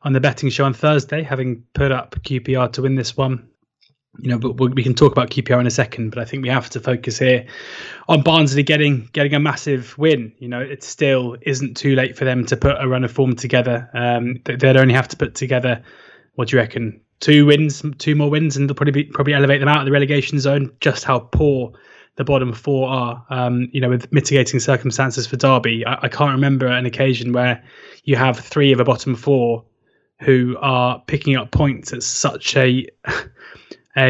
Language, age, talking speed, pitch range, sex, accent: English, 20-39, 215 wpm, 125-145 Hz, male, British